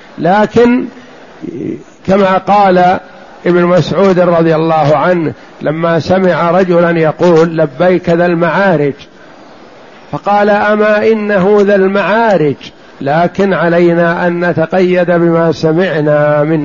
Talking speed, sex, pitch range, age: 95 wpm, male, 170-205 Hz, 60-79